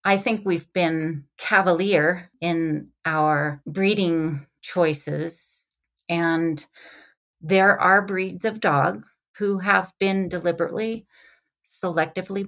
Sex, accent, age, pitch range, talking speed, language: female, American, 40-59, 155-180 Hz, 95 wpm, English